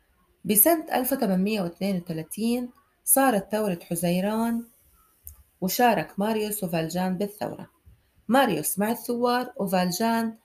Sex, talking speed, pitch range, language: female, 75 wpm, 175-230 Hz, Arabic